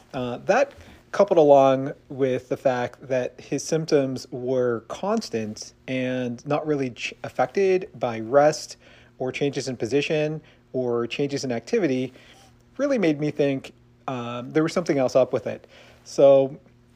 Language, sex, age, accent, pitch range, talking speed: English, male, 40-59, American, 120-145 Hz, 140 wpm